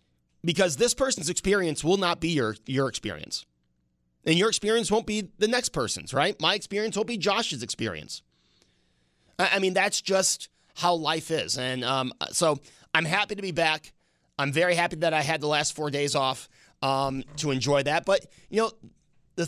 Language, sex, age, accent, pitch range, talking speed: English, male, 30-49, American, 135-185 Hz, 185 wpm